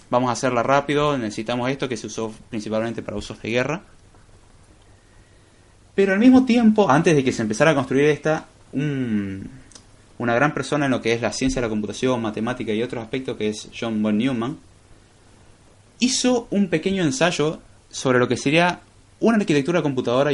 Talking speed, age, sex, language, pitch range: 170 wpm, 20-39, male, Spanish, 105-145 Hz